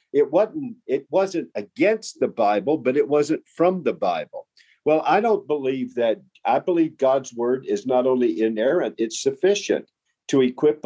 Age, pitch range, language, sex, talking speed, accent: 50-69, 130-190 Hz, English, male, 165 wpm, American